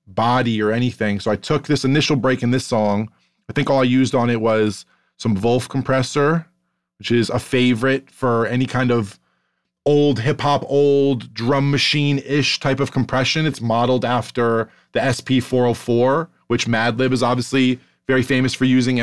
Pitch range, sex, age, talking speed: 120-140 Hz, male, 20-39, 165 wpm